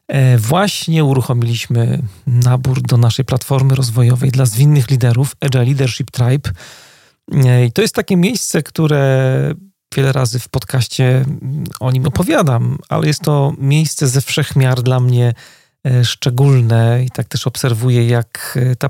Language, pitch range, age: Polish, 125-145 Hz, 40-59